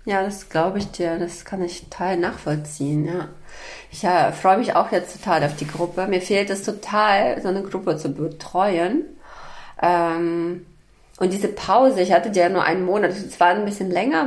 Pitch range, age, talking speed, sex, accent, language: 170-205 Hz, 20-39, 185 wpm, female, German, German